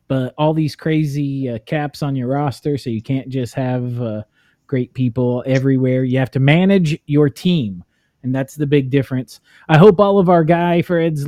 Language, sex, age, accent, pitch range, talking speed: English, male, 30-49, American, 125-155 Hz, 190 wpm